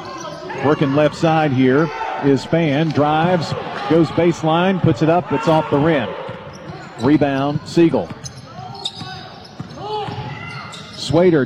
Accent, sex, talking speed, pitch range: American, male, 100 wpm, 145-175 Hz